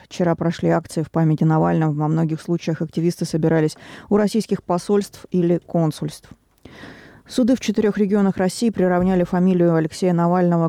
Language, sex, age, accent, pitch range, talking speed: Russian, female, 20-39, native, 165-185 Hz, 140 wpm